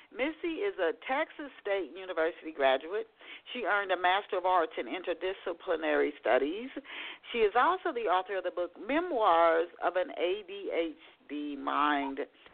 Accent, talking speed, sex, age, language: American, 140 wpm, female, 50-69, English